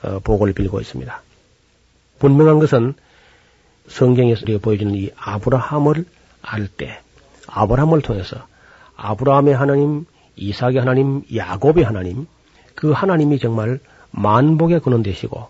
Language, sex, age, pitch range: Korean, male, 40-59, 105-145 Hz